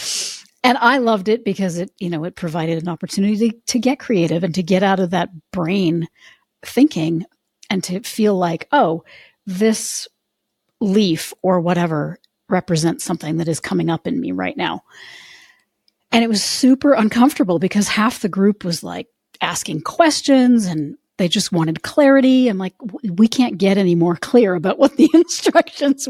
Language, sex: English, female